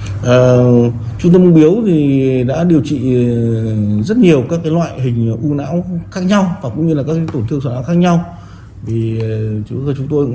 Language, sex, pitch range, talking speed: Vietnamese, male, 105-150 Hz, 190 wpm